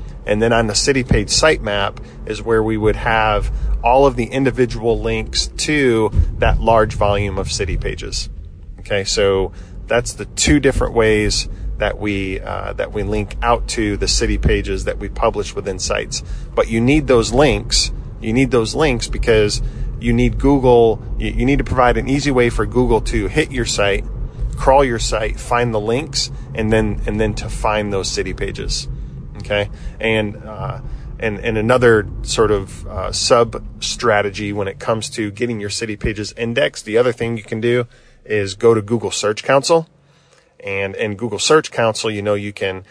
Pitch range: 105-120 Hz